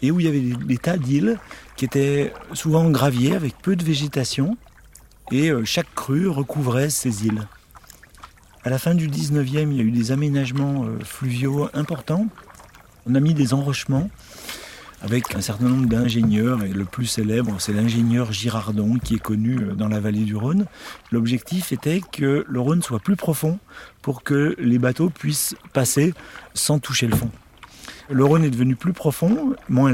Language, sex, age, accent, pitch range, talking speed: French, male, 40-59, French, 115-145 Hz, 170 wpm